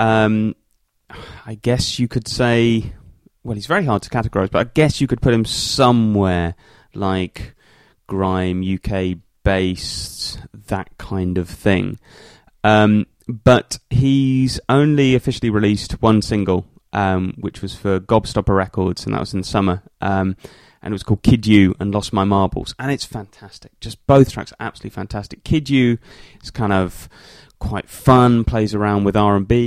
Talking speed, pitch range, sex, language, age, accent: 155 wpm, 95-120 Hz, male, English, 30-49, British